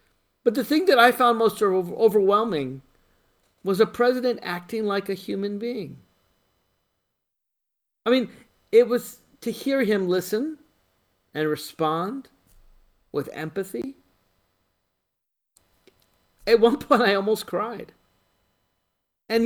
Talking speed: 110 wpm